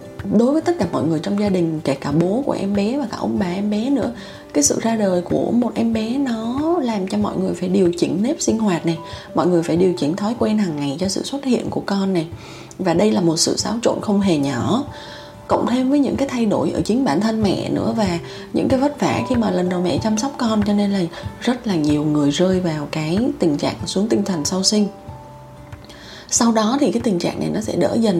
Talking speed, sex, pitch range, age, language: 260 wpm, female, 170-225 Hz, 20-39, Vietnamese